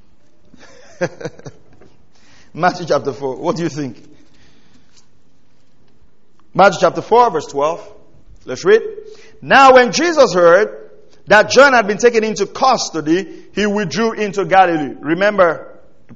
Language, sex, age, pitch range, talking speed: English, male, 50-69, 185-275 Hz, 115 wpm